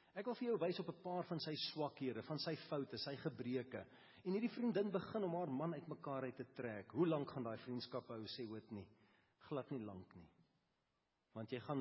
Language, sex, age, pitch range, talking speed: English, male, 40-59, 115-150 Hz, 225 wpm